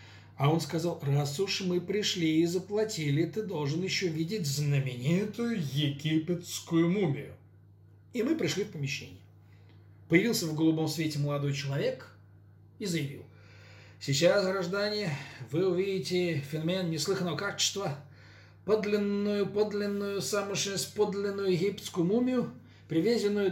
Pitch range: 130-185 Hz